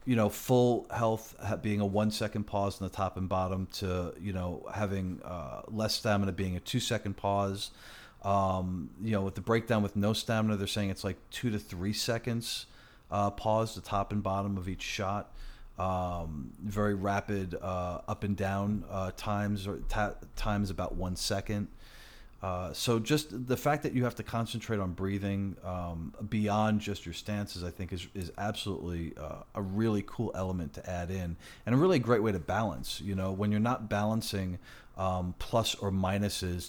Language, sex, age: English, male, 40-59